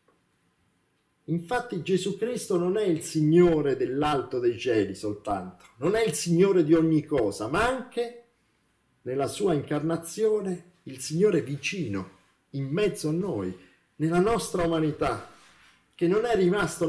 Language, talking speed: Italian, 130 wpm